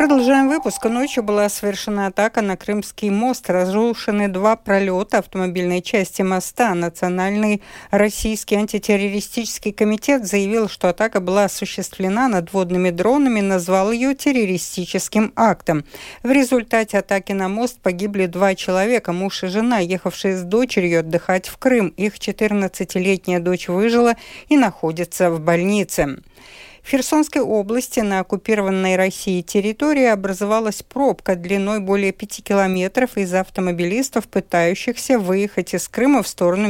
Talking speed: 125 wpm